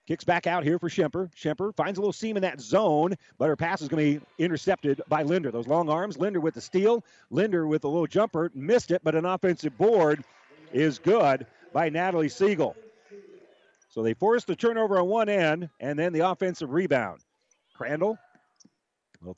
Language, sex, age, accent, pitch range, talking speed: English, male, 40-59, American, 140-185 Hz, 190 wpm